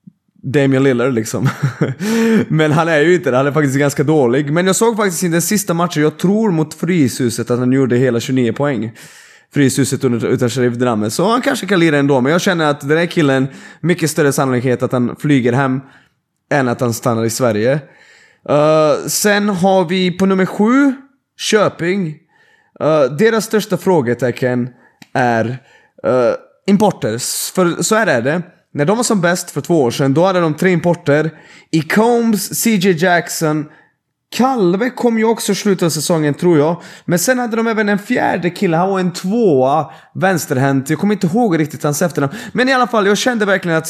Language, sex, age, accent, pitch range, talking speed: Swedish, male, 20-39, native, 140-195 Hz, 185 wpm